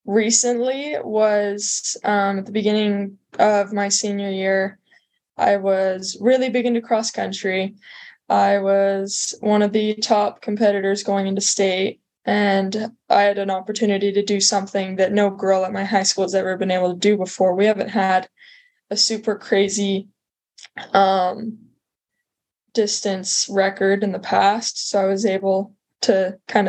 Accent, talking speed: American, 150 wpm